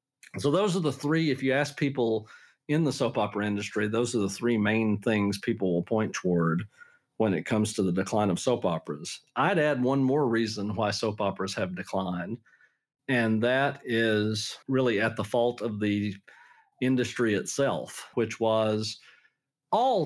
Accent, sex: American, male